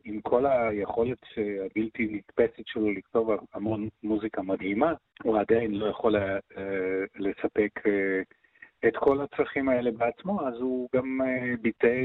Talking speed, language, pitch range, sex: 120 wpm, Hebrew, 105-125 Hz, male